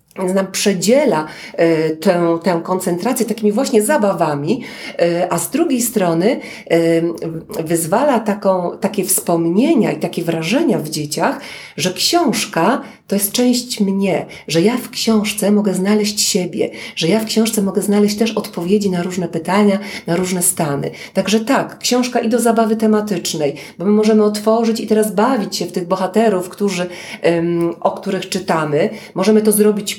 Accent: native